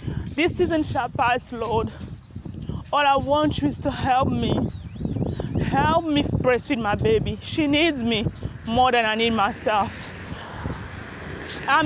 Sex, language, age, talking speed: female, English, 20-39, 130 wpm